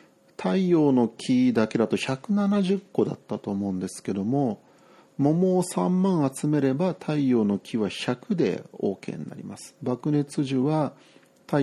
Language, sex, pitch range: Japanese, male, 115-165 Hz